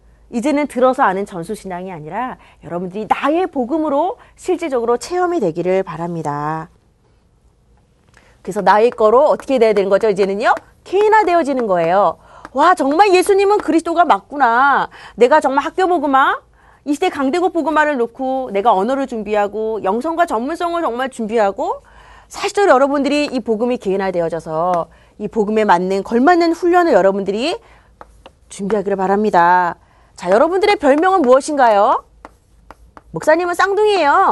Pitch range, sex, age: 200-330 Hz, female, 30-49